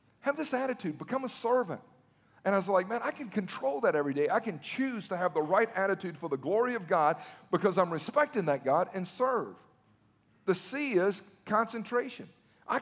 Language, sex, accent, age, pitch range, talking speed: English, male, American, 50-69, 185-260 Hz, 195 wpm